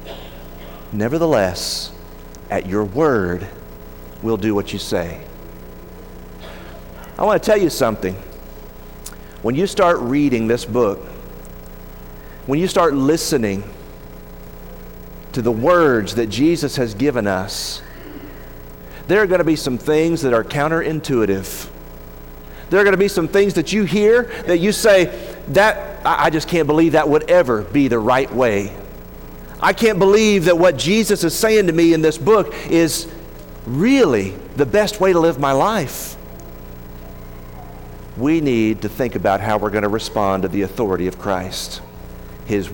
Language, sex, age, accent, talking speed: English, male, 40-59, American, 150 wpm